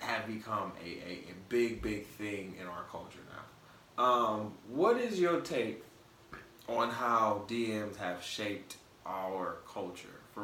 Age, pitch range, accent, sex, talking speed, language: 20-39, 95-120 Hz, American, male, 145 wpm, English